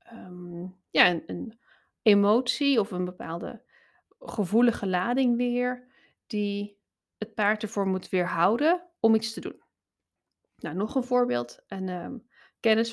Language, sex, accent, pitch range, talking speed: Dutch, female, Dutch, 180-230 Hz, 130 wpm